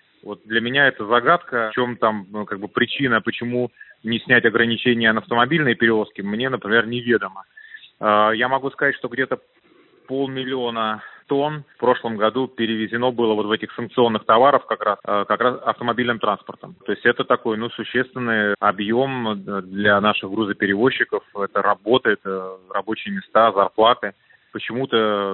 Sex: male